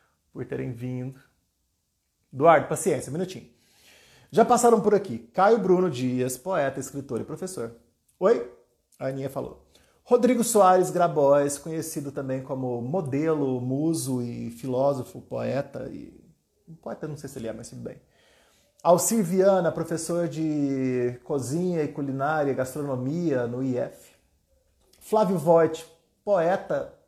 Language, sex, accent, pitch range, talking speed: Portuguese, male, Brazilian, 125-170 Hz, 125 wpm